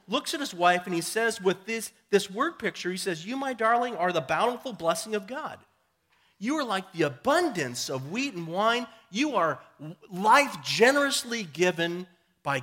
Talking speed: 180 wpm